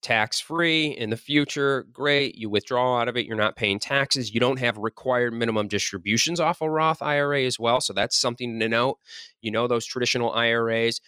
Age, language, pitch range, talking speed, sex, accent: 20-39, English, 105-135 Hz, 195 wpm, male, American